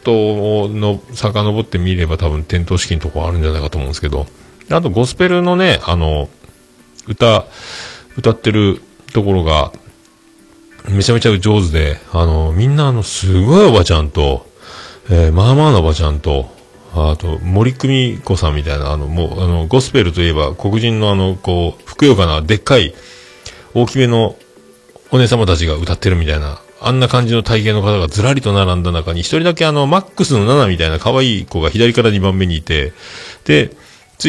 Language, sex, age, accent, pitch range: Japanese, male, 40-59, native, 85-125 Hz